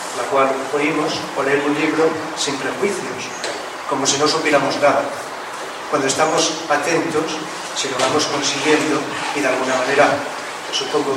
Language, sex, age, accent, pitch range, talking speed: Spanish, male, 40-59, Spanish, 135-155 Hz, 140 wpm